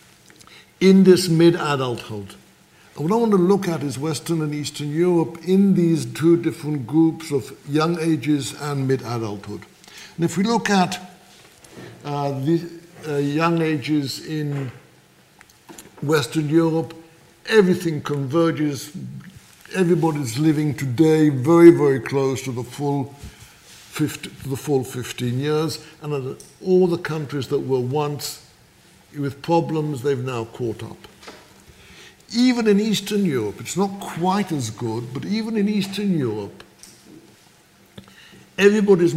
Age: 60-79